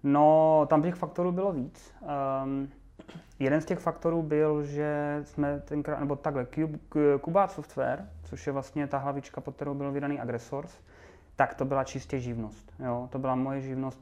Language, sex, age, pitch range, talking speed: Czech, male, 20-39, 120-140 Hz, 170 wpm